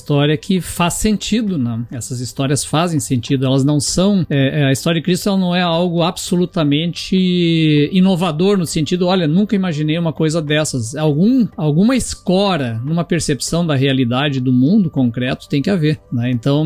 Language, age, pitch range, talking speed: Portuguese, 50-69, 140-190 Hz, 155 wpm